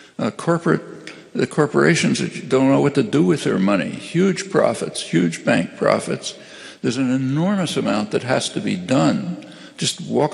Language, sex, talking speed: English, male, 170 wpm